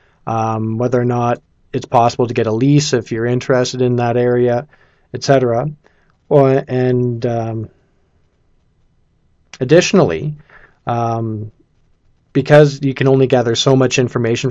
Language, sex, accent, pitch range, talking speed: English, male, American, 120-135 Hz, 130 wpm